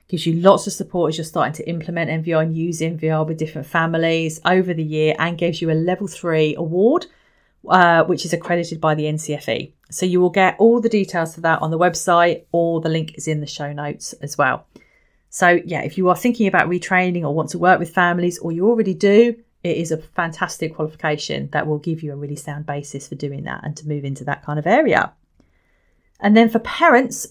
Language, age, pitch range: English, 30-49, 155-180 Hz